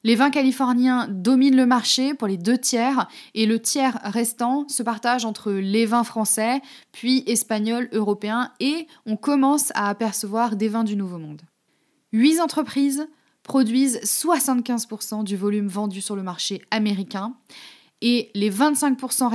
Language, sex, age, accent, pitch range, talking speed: French, female, 20-39, French, 210-265 Hz, 145 wpm